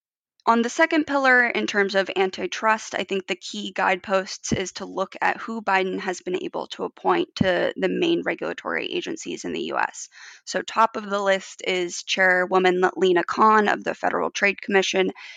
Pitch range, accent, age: 190-245 Hz, American, 20-39